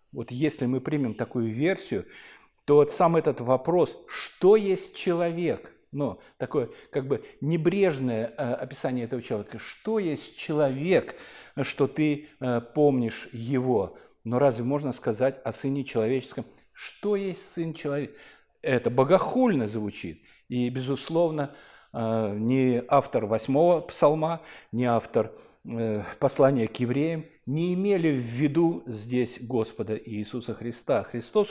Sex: male